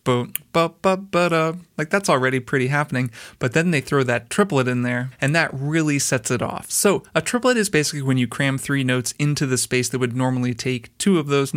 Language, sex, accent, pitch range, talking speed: English, male, American, 130-160 Hz, 200 wpm